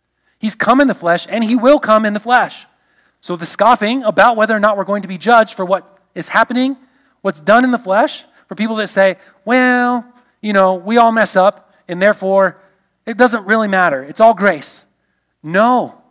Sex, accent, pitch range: male, American, 175-220 Hz